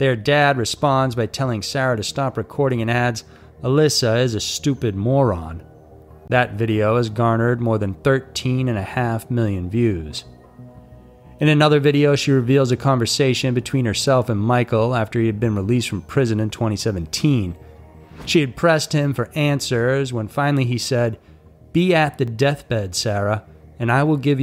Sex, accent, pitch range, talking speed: male, American, 110-135 Hz, 155 wpm